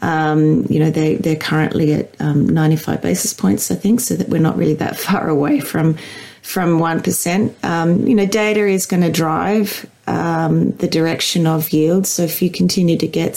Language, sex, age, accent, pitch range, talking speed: English, female, 30-49, Australian, 160-185 Hz, 195 wpm